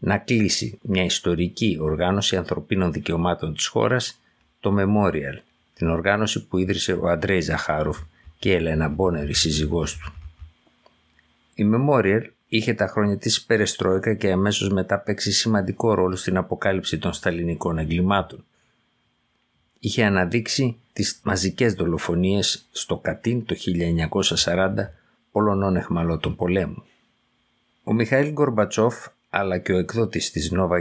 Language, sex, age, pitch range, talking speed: Greek, male, 50-69, 85-110 Hz, 125 wpm